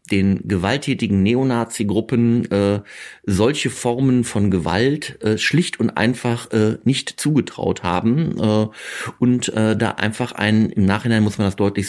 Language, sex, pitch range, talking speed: German, male, 100-120 Hz, 140 wpm